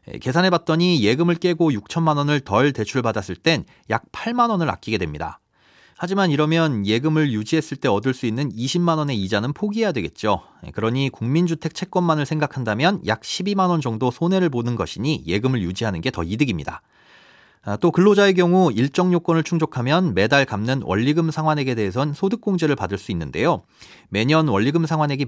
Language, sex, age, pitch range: Korean, male, 40-59, 115-175 Hz